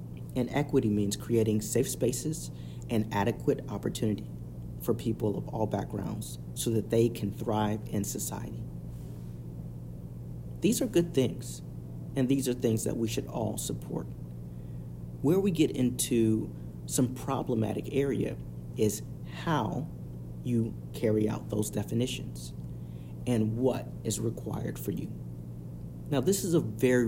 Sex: male